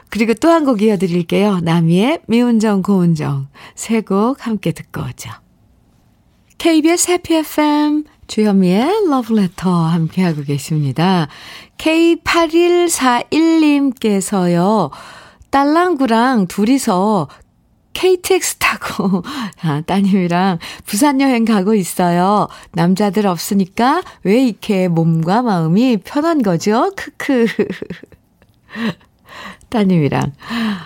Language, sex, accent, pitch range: Korean, female, native, 170-260 Hz